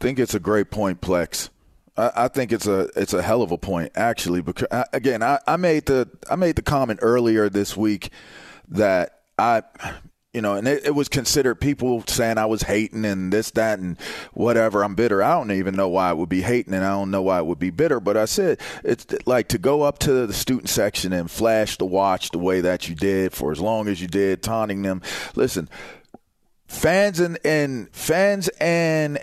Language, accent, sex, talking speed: English, American, male, 215 wpm